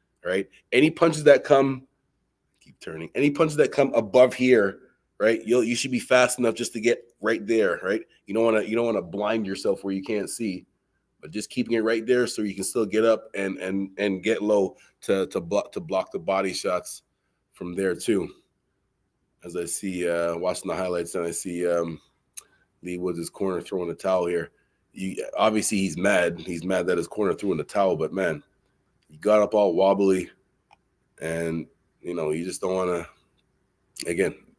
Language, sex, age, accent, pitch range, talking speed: English, male, 20-39, American, 90-115 Hz, 200 wpm